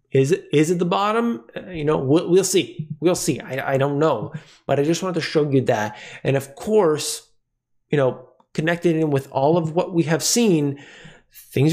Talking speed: 200 wpm